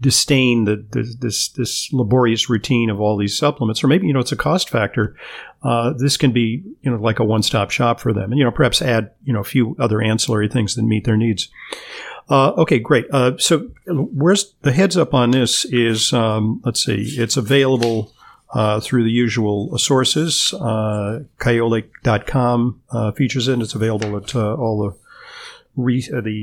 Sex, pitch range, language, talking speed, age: male, 110-130 Hz, English, 190 wpm, 50-69